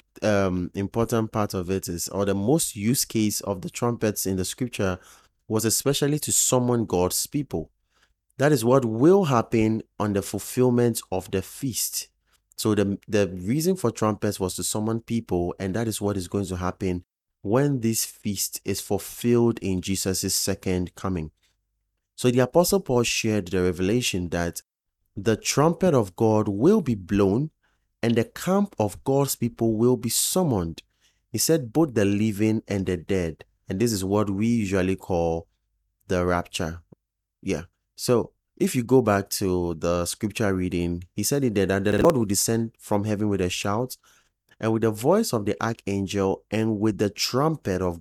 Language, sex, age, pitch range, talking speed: English, male, 30-49, 95-120 Hz, 170 wpm